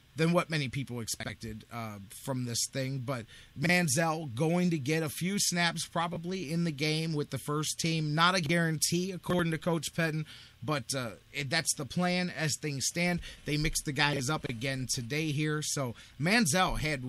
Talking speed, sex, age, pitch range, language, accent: 185 wpm, male, 30-49, 130-165 Hz, English, American